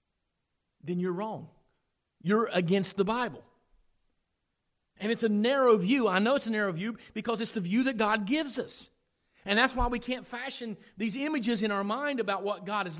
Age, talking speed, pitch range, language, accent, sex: 40-59, 190 wpm, 205-245 Hz, English, American, male